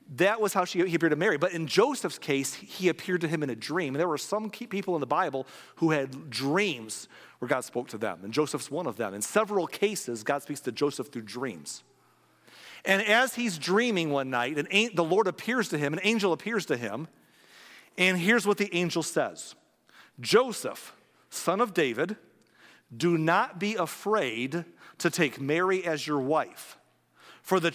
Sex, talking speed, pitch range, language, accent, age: male, 195 wpm, 130-190 Hz, English, American, 40-59